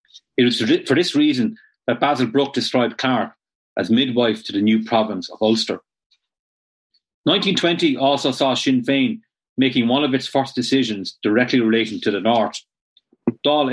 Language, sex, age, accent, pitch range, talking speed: English, male, 30-49, Irish, 115-145 Hz, 155 wpm